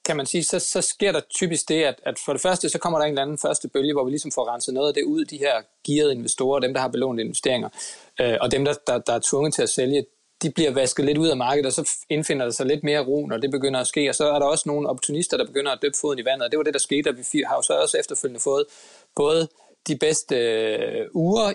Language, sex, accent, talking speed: Danish, male, native, 285 wpm